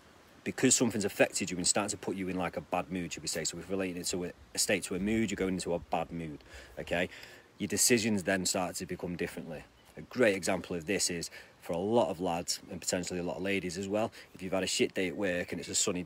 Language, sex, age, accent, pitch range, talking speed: English, male, 30-49, British, 85-100 Hz, 270 wpm